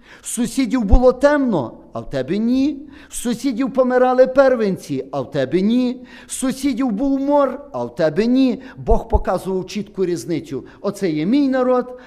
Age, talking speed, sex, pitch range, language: 50-69, 155 wpm, male, 160-255 Hz, Ukrainian